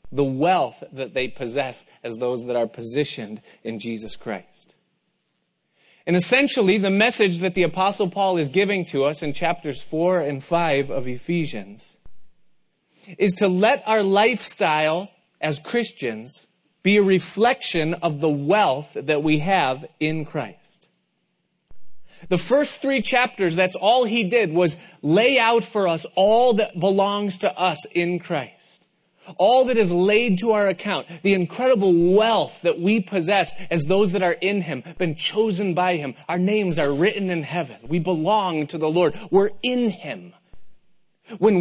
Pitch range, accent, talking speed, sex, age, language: 155-200 Hz, American, 155 wpm, male, 30-49, English